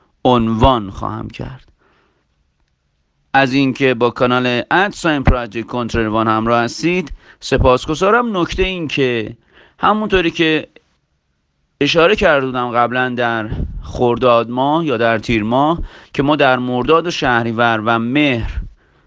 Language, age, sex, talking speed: Persian, 40-59, male, 115 wpm